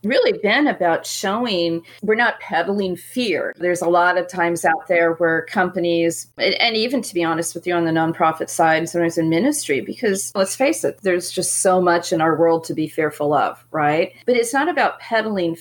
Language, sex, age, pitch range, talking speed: English, female, 40-59, 160-185 Hz, 200 wpm